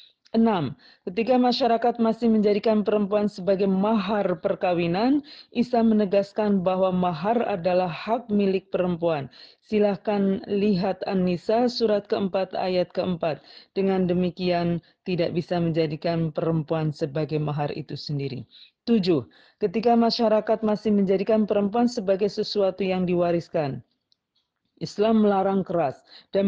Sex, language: female, Indonesian